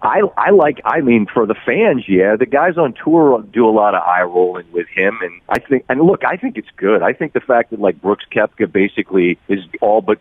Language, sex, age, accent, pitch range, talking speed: English, male, 40-59, American, 100-140 Hz, 245 wpm